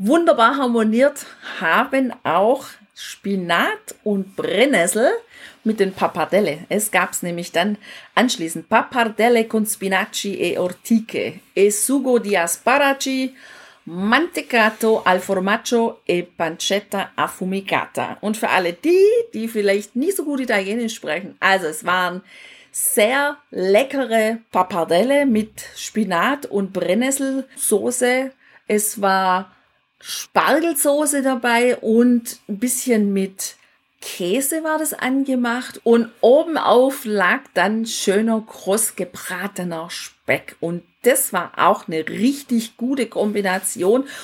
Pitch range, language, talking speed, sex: 195-255 Hz, German, 110 wpm, female